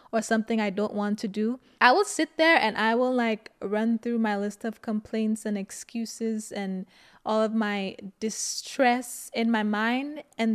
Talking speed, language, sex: 180 wpm, English, female